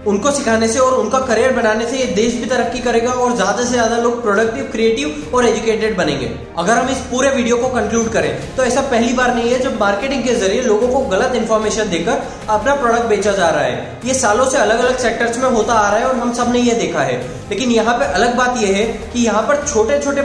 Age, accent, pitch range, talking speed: 20-39, native, 220-255 Hz, 240 wpm